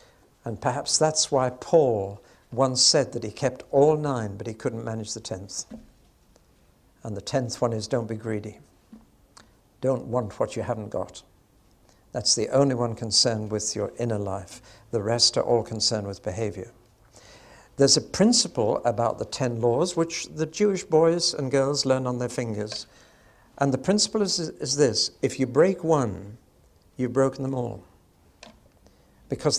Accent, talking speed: British, 160 wpm